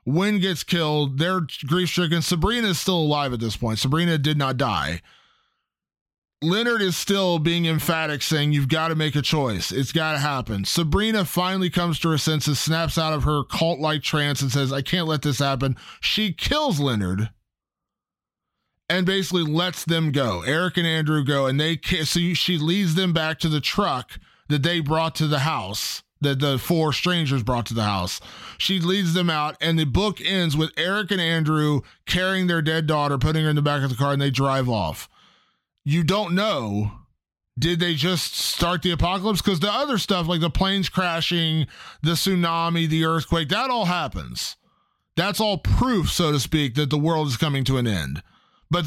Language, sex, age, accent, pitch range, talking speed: English, male, 20-39, American, 140-180 Hz, 190 wpm